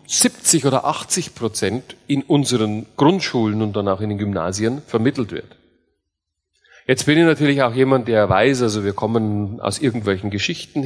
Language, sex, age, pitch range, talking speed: German, male, 40-59, 110-160 Hz, 160 wpm